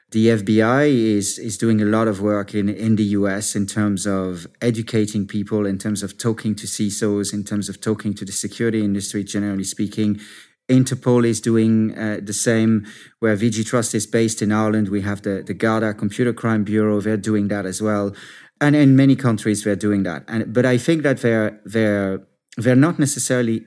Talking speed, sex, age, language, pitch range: 195 wpm, male, 30-49, English, 105-120 Hz